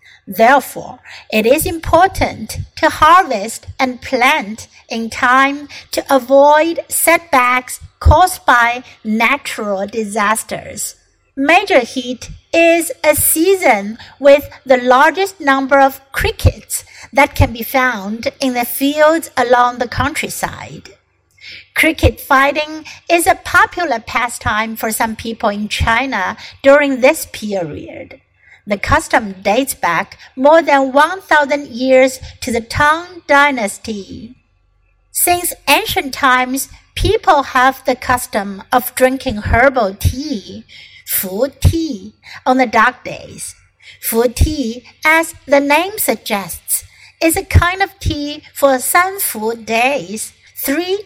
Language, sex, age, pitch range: Chinese, female, 60-79, 235-300 Hz